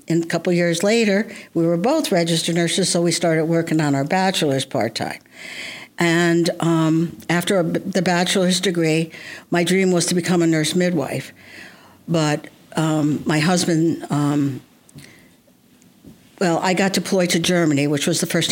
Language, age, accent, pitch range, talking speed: English, 60-79, American, 160-185 Hz, 155 wpm